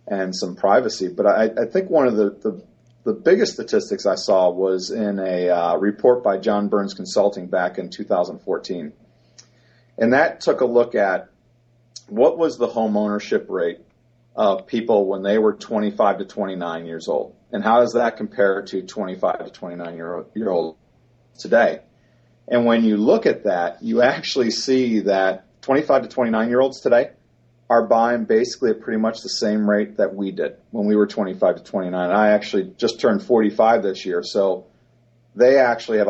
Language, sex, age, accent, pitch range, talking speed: English, male, 40-59, American, 100-120 Hz, 180 wpm